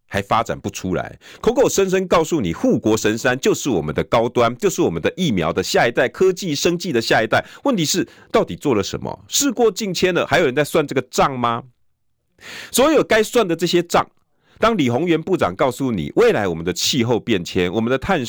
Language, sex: Chinese, male